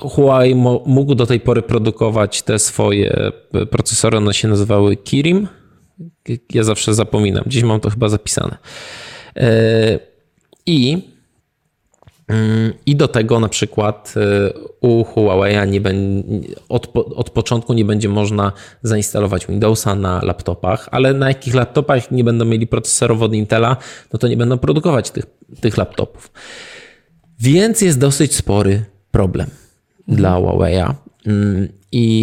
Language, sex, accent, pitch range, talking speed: Polish, male, native, 100-120 Hz, 125 wpm